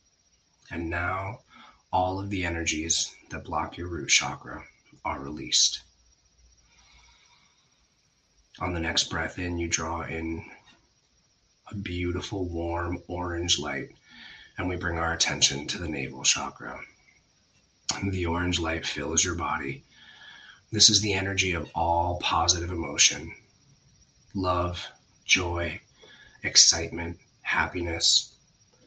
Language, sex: English, male